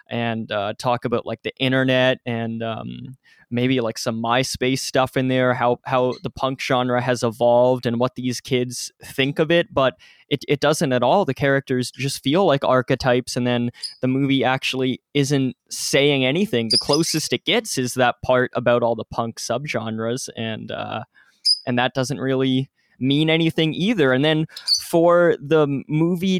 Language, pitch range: English, 125-145 Hz